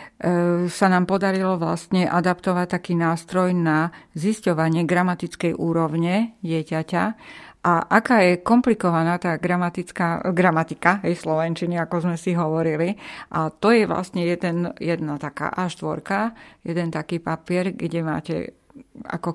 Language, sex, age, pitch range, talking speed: Slovak, female, 50-69, 165-185 Hz, 120 wpm